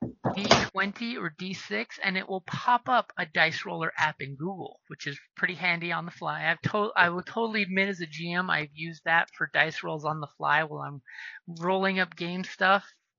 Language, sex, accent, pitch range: English, male, American, 160-195 Hz